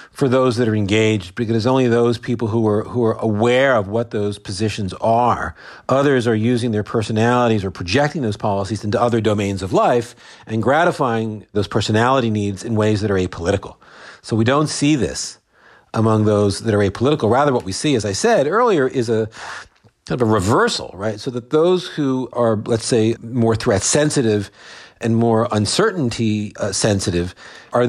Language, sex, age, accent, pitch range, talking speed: English, male, 40-59, American, 105-130 Hz, 180 wpm